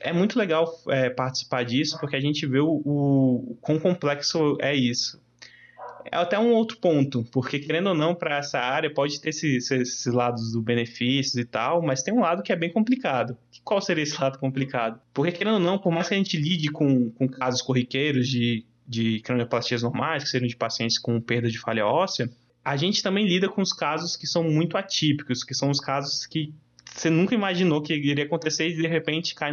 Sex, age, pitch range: male, 20-39, 130-170 Hz